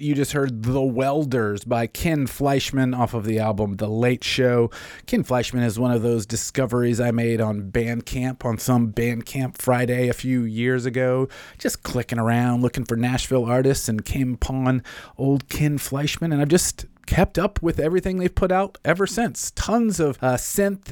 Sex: male